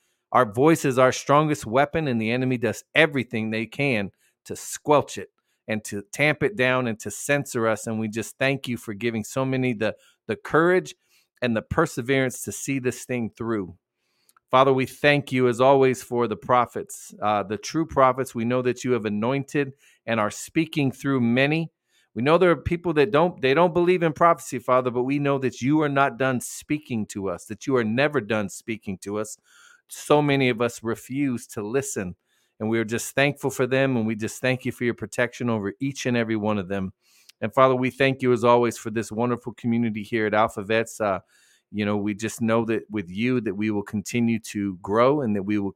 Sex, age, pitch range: male, 40-59, 110-135 Hz